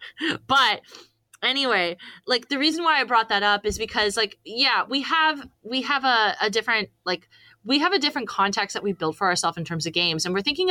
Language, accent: English, American